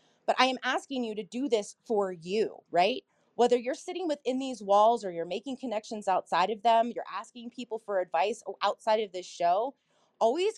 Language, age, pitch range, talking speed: English, 30-49, 195-260 Hz, 195 wpm